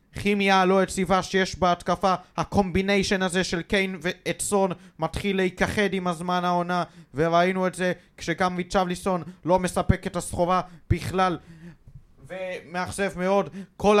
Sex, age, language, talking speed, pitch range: male, 20-39, Hebrew, 125 wpm, 170-190 Hz